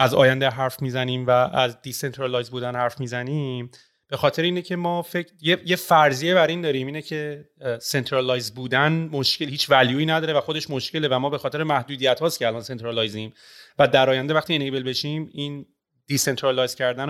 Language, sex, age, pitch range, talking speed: Persian, male, 30-49, 130-155 Hz, 175 wpm